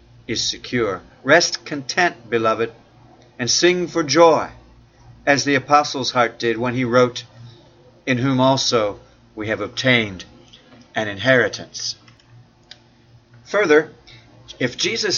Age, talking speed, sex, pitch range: 50-69, 110 wpm, male, 120-140 Hz